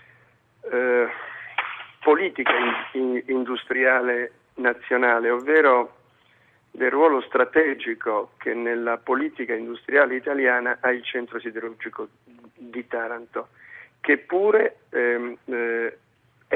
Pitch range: 120-155 Hz